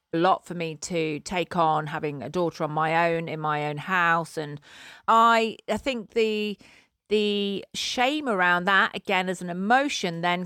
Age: 40-59